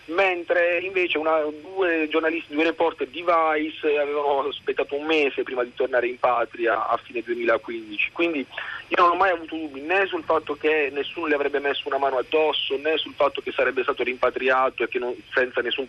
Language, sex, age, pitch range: Italian, male, 30-49, 125-170 Hz